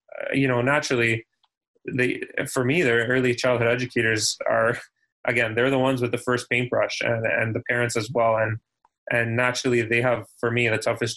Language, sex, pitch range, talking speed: English, male, 115-130 Hz, 190 wpm